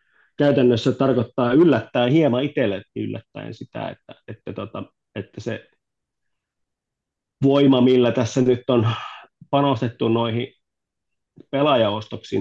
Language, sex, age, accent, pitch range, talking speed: Finnish, male, 30-49, native, 110-125 Hz, 95 wpm